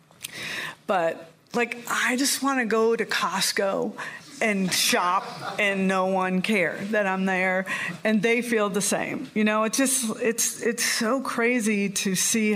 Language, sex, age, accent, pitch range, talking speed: English, female, 50-69, American, 185-230 Hz, 160 wpm